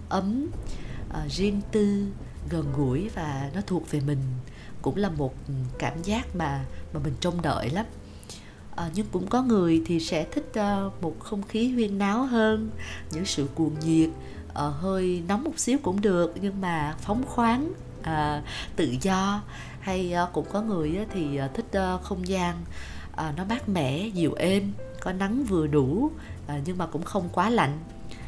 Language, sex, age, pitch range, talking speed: Vietnamese, female, 20-39, 150-210 Hz, 175 wpm